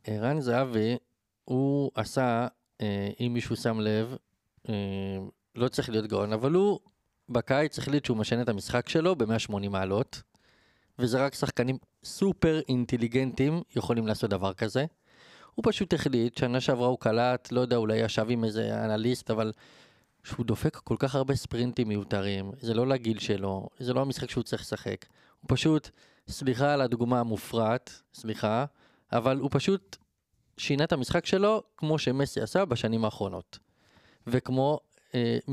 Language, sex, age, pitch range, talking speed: Hebrew, male, 20-39, 110-135 Hz, 145 wpm